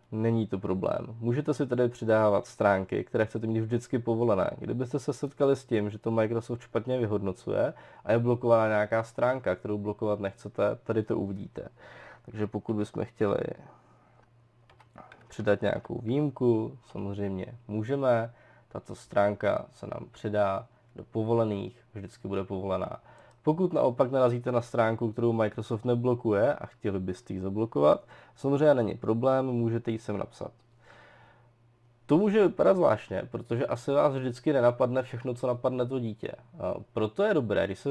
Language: Czech